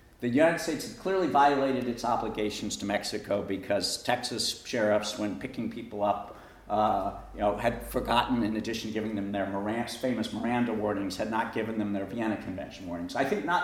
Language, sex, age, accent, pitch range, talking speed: English, male, 50-69, American, 105-130 Hz, 185 wpm